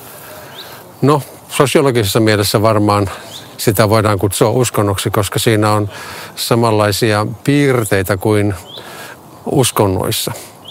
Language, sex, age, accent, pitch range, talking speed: Finnish, male, 50-69, native, 105-125 Hz, 85 wpm